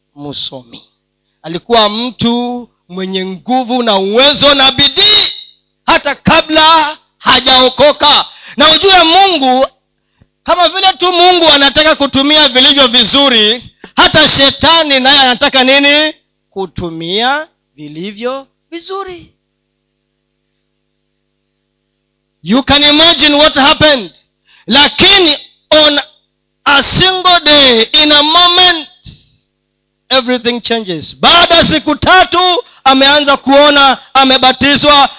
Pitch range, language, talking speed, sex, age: 210-295 Hz, Swahili, 90 wpm, male, 40-59